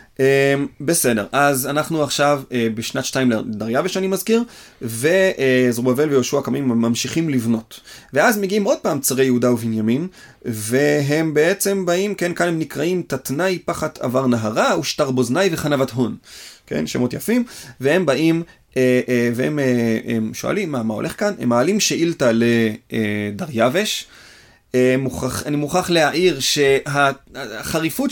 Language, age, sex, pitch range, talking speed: Hebrew, 30-49, male, 130-175 Hz, 120 wpm